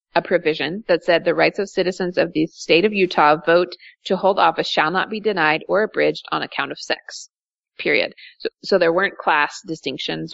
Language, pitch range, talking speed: English, 160-205 Hz, 195 wpm